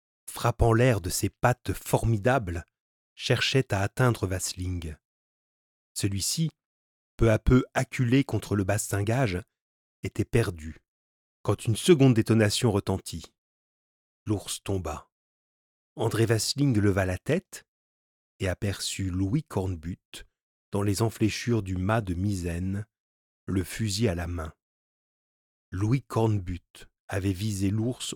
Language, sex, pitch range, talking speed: French, male, 90-115 Hz, 115 wpm